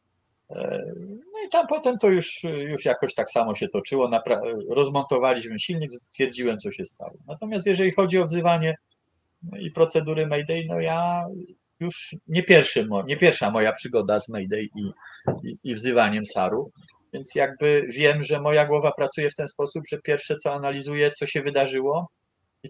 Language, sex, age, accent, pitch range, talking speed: Polish, male, 40-59, native, 120-165 Hz, 165 wpm